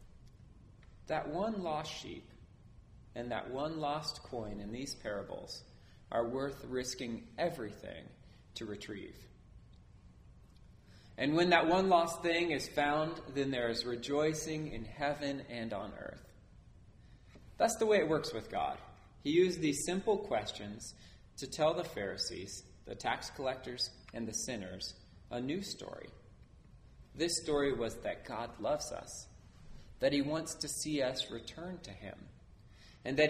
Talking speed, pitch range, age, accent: 140 wpm, 120-160 Hz, 30-49, American